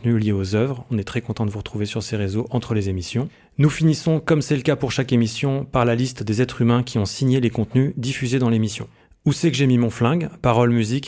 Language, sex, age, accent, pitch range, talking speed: French, male, 30-49, French, 110-135 Hz, 260 wpm